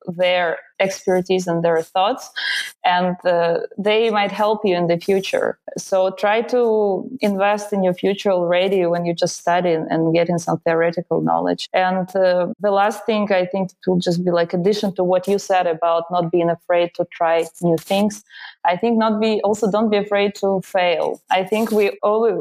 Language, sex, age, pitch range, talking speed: Polish, female, 20-39, 175-205 Hz, 185 wpm